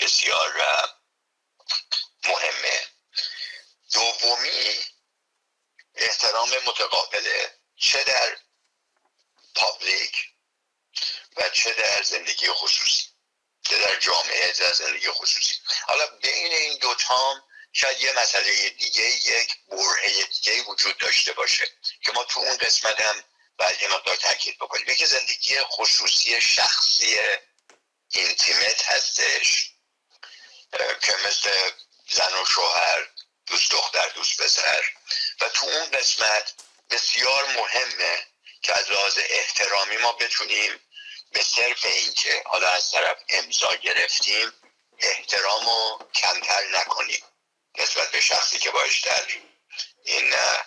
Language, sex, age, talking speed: Persian, male, 60-79, 105 wpm